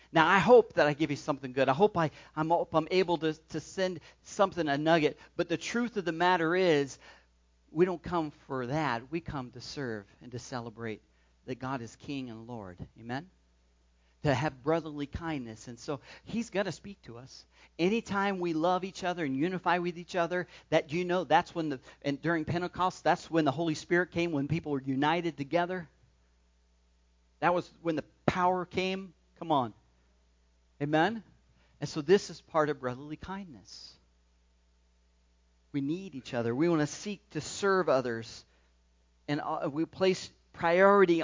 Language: English